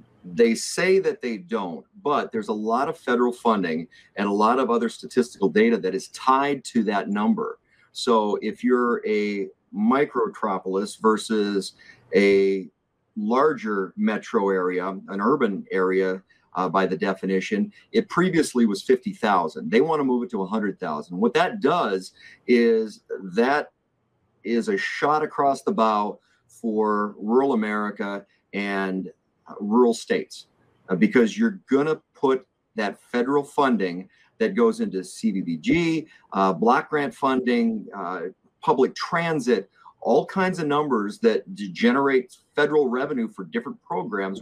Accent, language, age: American, English, 40-59